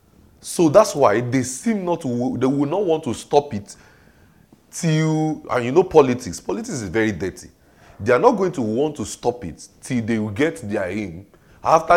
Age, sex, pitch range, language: 30-49, male, 110-160 Hz, English